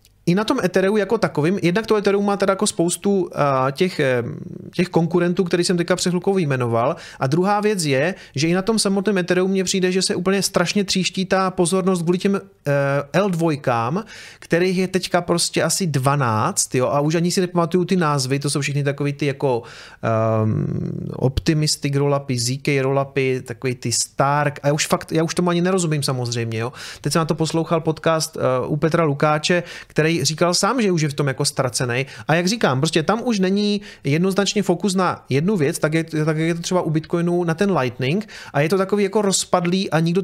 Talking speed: 205 wpm